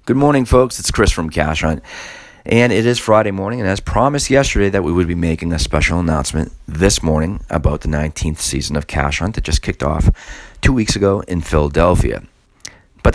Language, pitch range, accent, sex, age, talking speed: English, 75-105 Hz, American, male, 40-59, 200 wpm